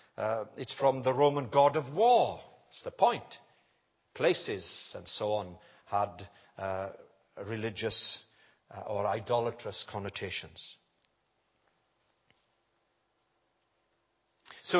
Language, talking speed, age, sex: English, 95 wpm, 60-79, male